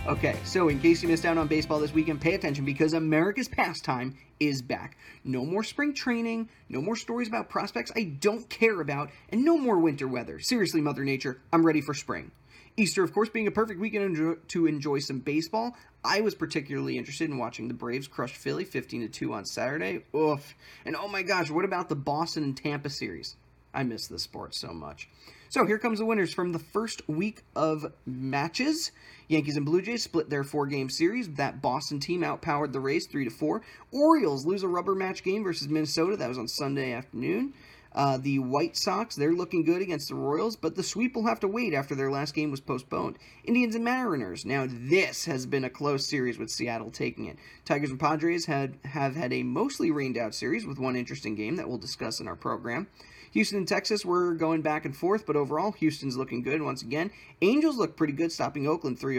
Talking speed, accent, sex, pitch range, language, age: 205 wpm, American, male, 140-195 Hz, English, 30-49